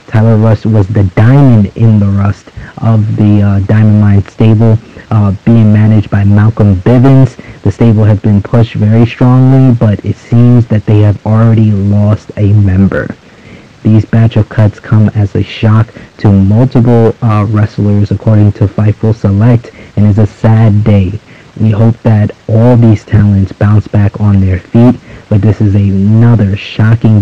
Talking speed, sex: 165 wpm, male